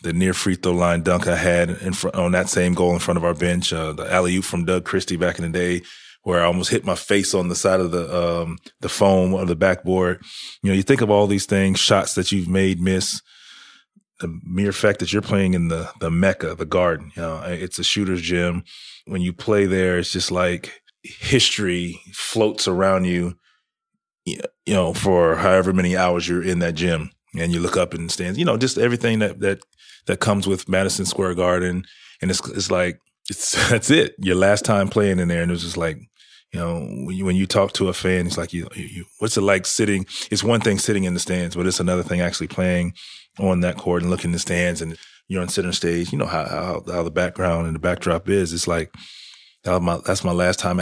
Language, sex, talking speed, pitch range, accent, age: English, male, 235 wpm, 85-95 Hz, American, 30-49